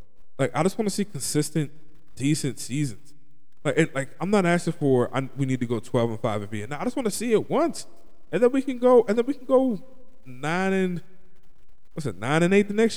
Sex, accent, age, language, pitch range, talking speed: male, American, 20-39, English, 135-185 Hz, 250 wpm